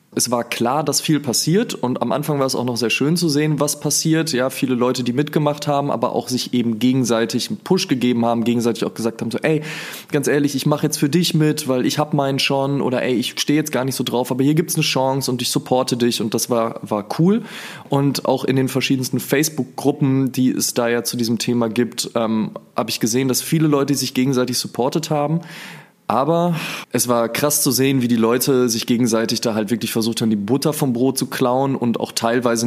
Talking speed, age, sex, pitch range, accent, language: 235 wpm, 20-39, male, 120-150 Hz, German, German